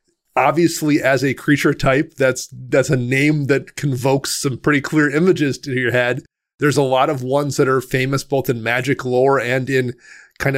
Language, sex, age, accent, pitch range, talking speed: English, male, 30-49, American, 130-150 Hz, 185 wpm